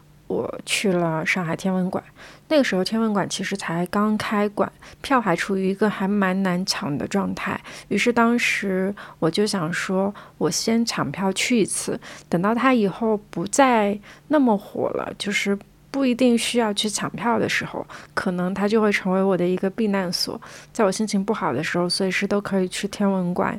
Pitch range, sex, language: 180-215 Hz, female, Chinese